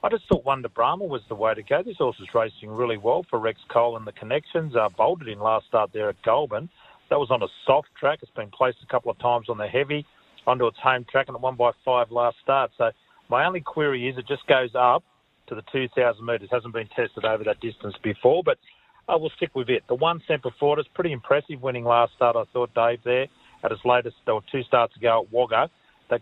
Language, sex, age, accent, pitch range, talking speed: English, male, 40-59, Australian, 115-145 Hz, 250 wpm